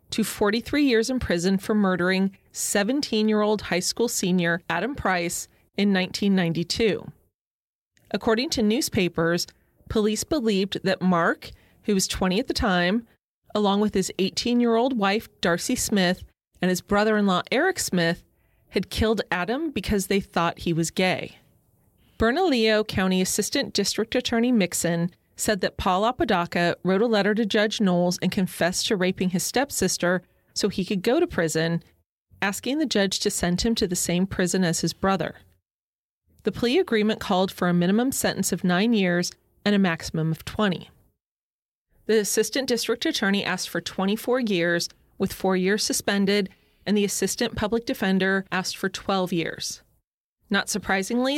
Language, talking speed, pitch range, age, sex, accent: English, 150 wpm, 180-220 Hz, 30-49, female, American